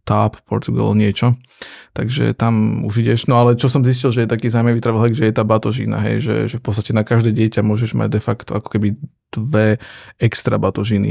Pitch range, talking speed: 110-125 Hz, 205 wpm